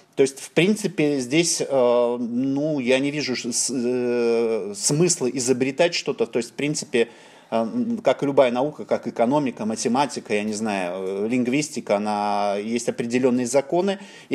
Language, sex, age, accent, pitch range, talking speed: Russian, male, 30-49, native, 125-160 Hz, 140 wpm